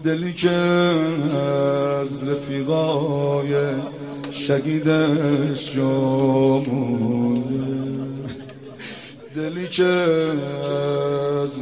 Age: 60-79